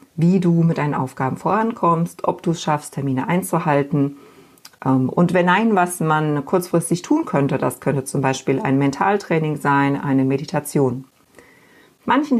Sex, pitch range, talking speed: female, 135-170 Hz, 145 wpm